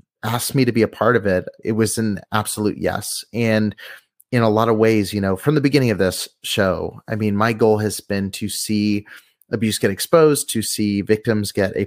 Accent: American